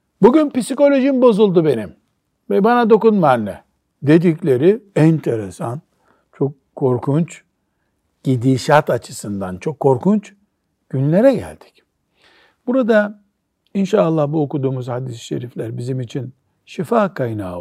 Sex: male